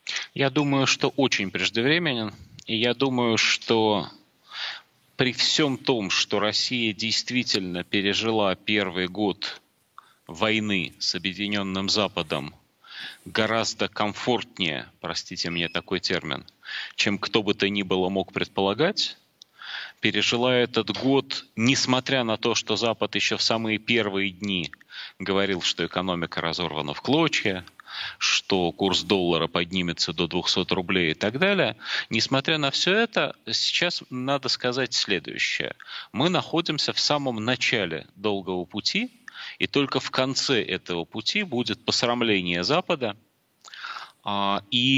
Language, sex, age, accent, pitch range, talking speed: Russian, male, 30-49, native, 95-130 Hz, 120 wpm